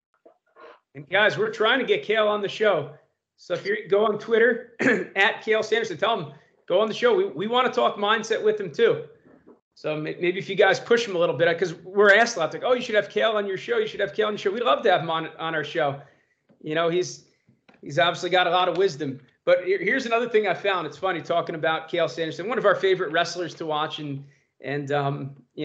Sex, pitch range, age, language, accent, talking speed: male, 160-205 Hz, 30-49, English, American, 250 wpm